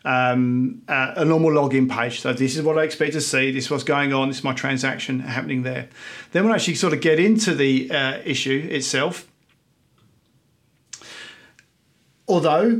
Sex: male